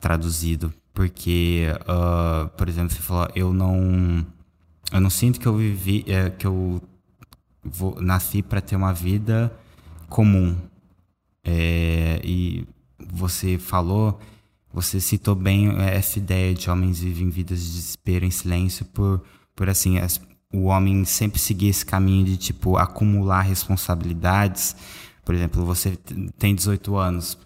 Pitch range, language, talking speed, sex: 85-95 Hz, Portuguese, 135 wpm, male